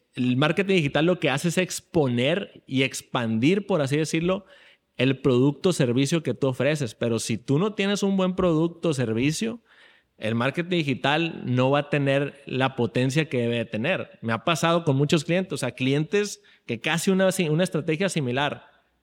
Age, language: 30-49, Spanish